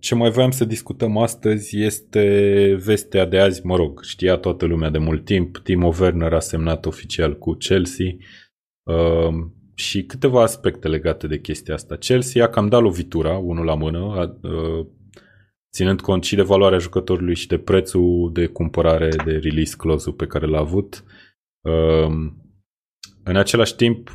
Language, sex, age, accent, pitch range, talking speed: Romanian, male, 20-39, native, 80-100 Hz, 160 wpm